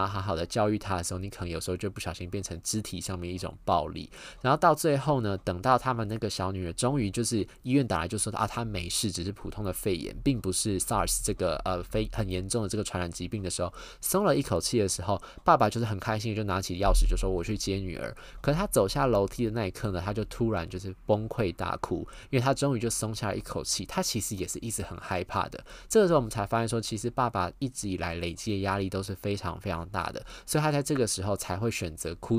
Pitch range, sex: 90-115 Hz, male